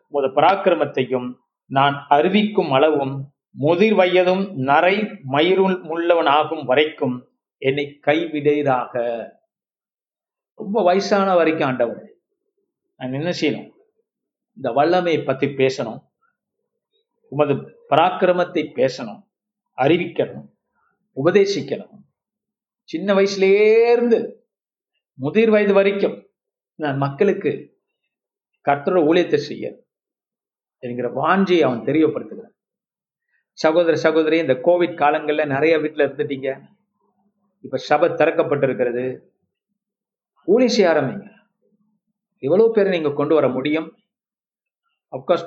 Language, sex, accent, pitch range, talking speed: Tamil, male, native, 150-210 Hz, 85 wpm